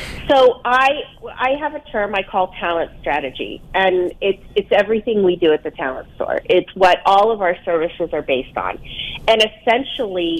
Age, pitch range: 40-59, 170-210 Hz